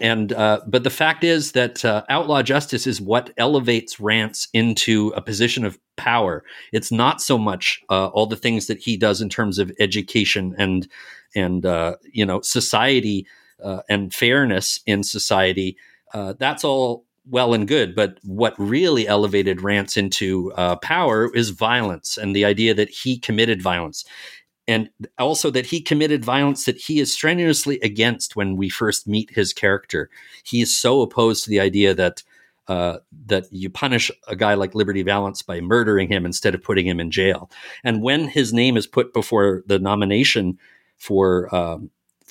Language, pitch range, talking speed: English, 95-120 Hz, 175 wpm